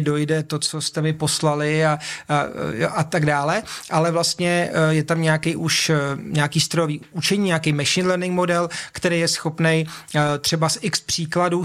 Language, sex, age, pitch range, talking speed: Czech, male, 30-49, 150-170 Hz, 160 wpm